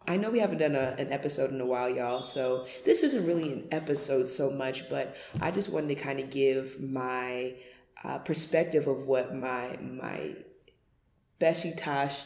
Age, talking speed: 20-39, 175 wpm